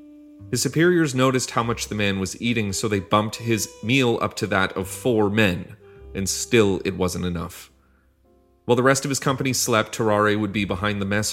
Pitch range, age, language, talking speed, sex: 90-115 Hz, 30-49, English, 200 wpm, male